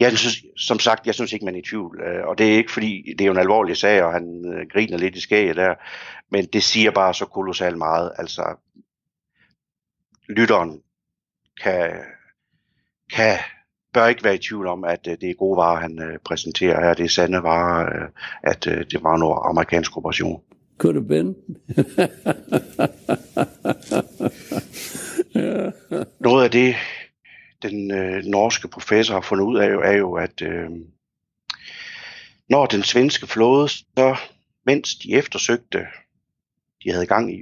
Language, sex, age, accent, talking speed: Danish, male, 60-79, native, 150 wpm